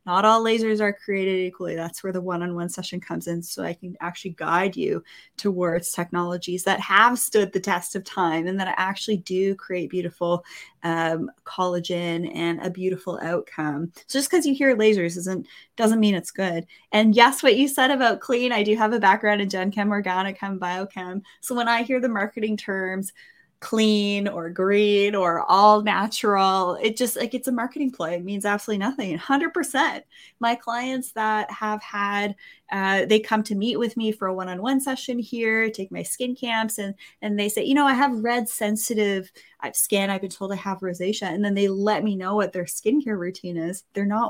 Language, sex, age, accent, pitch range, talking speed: English, female, 20-39, American, 180-225 Hz, 200 wpm